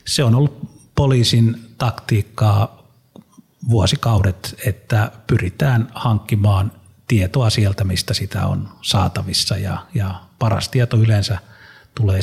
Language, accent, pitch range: Finnish, native, 100-120 Hz